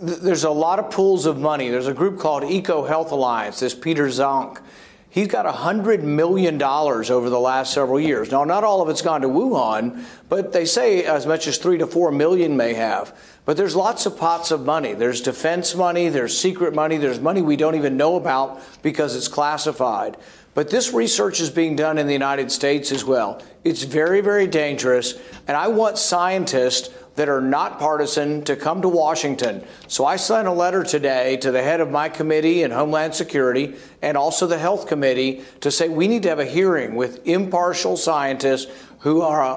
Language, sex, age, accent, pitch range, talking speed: English, male, 50-69, American, 140-175 Hz, 200 wpm